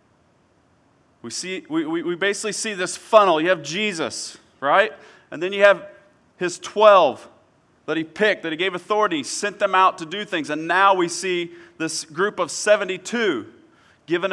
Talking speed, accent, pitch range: 165 wpm, American, 165-210 Hz